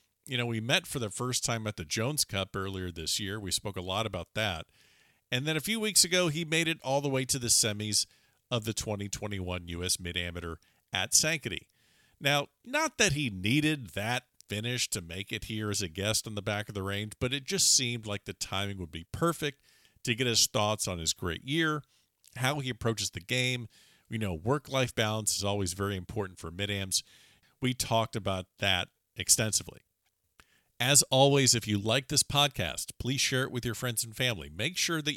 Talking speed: 205 wpm